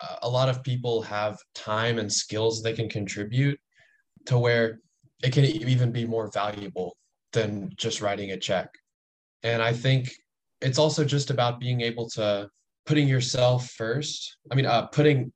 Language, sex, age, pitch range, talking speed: English, male, 20-39, 110-130 Hz, 160 wpm